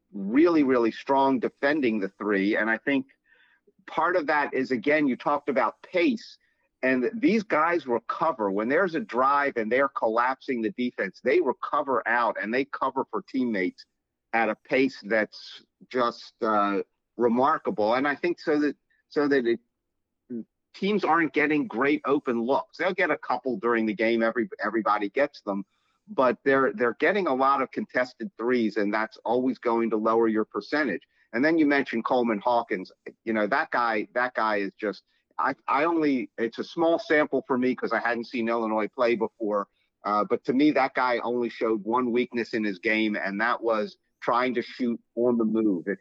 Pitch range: 110-145 Hz